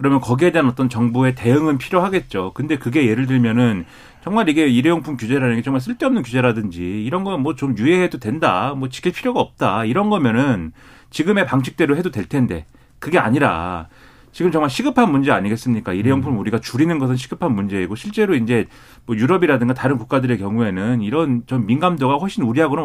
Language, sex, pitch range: Korean, male, 120-160 Hz